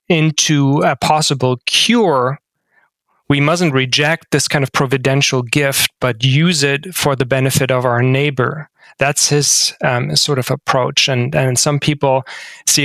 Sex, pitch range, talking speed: male, 135-155 Hz, 150 wpm